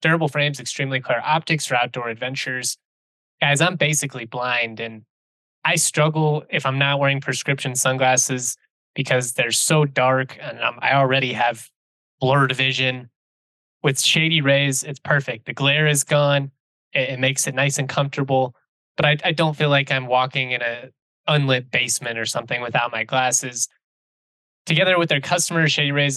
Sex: male